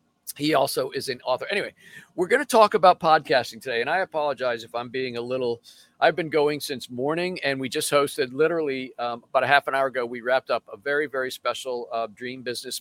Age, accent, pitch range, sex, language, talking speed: 50-69, American, 135-190 Hz, male, English, 225 wpm